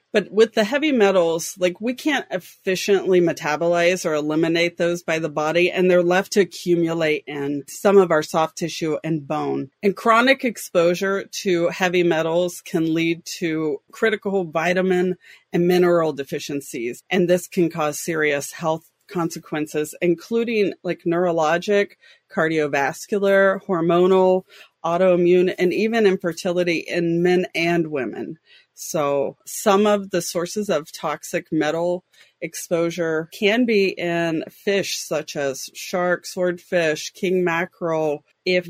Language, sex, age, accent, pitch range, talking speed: English, female, 30-49, American, 165-195 Hz, 130 wpm